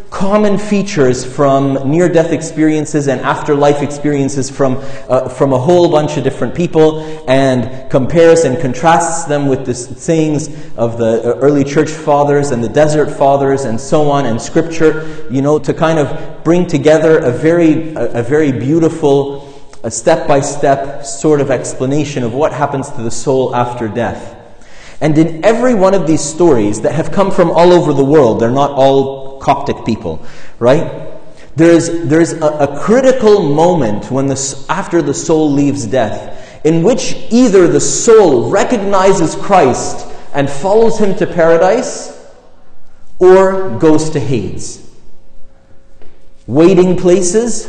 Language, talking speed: English, 145 wpm